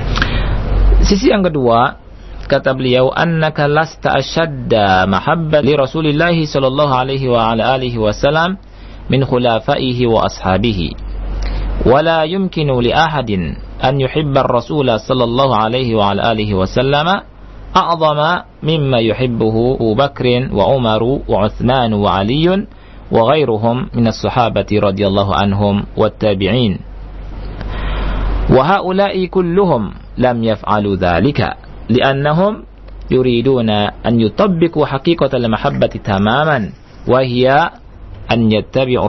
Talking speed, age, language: 100 wpm, 50-69, Indonesian